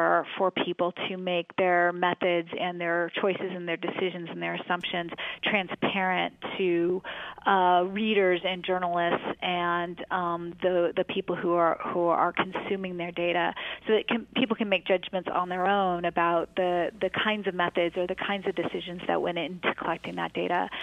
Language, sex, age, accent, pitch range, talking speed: English, female, 30-49, American, 175-200 Hz, 175 wpm